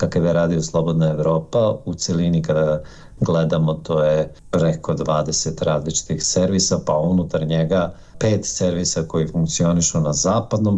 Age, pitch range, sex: 50-69, 85-100 Hz, male